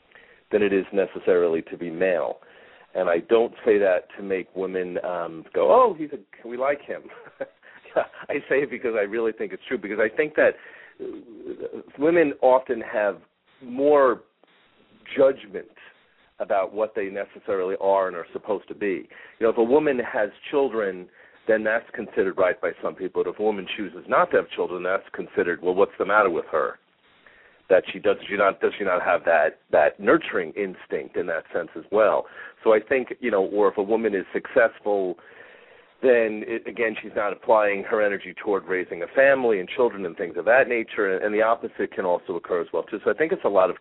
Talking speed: 205 wpm